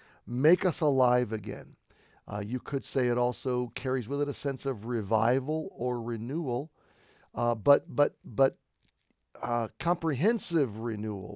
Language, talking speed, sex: English, 135 wpm, male